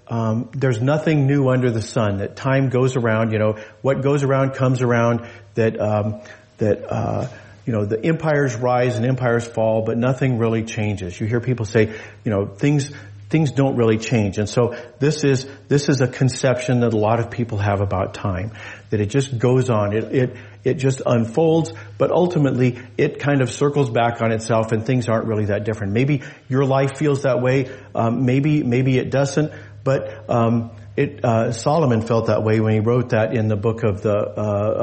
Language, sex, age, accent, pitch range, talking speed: English, male, 50-69, American, 110-130 Hz, 200 wpm